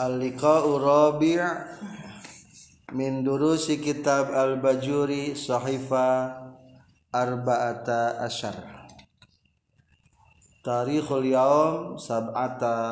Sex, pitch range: male, 115-140 Hz